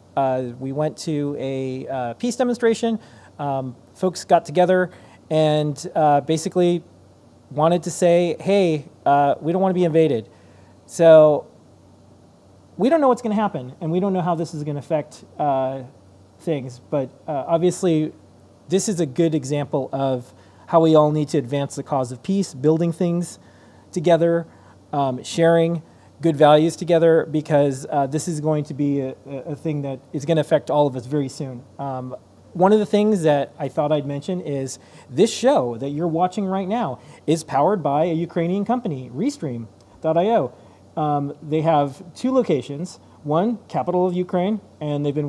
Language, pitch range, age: English, 135-170 Hz, 30-49